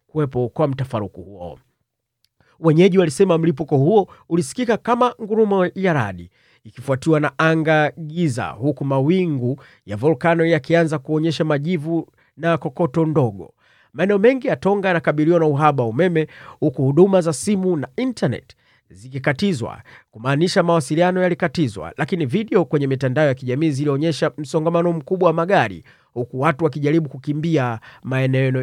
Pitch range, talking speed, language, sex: 135-175 Hz, 130 wpm, Swahili, male